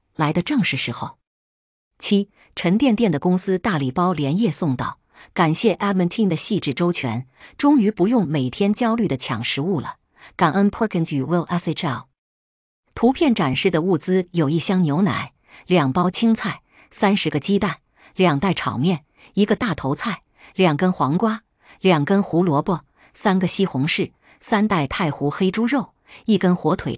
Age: 50-69